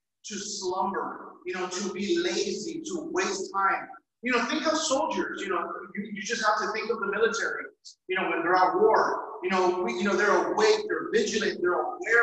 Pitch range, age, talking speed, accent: 205-330 Hz, 30-49, 210 wpm, American